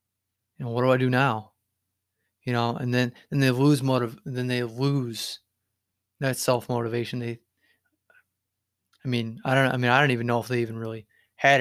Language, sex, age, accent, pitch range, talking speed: English, male, 20-39, American, 110-130 Hz, 185 wpm